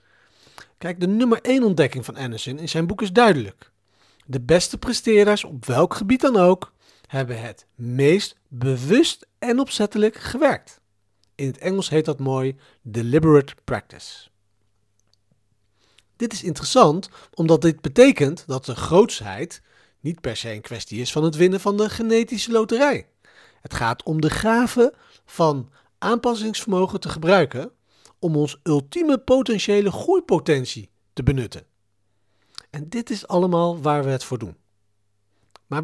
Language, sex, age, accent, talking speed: Dutch, male, 40-59, Dutch, 140 wpm